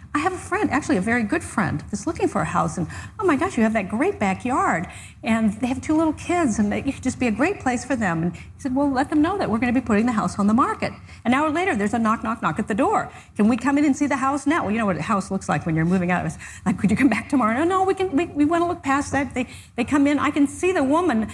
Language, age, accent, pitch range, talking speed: English, 50-69, American, 195-285 Hz, 330 wpm